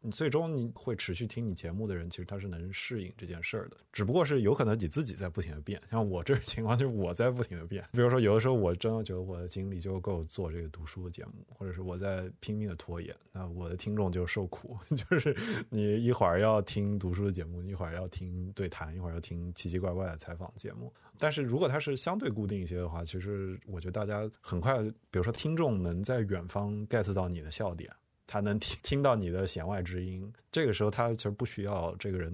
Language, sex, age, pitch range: Chinese, male, 20-39, 90-110 Hz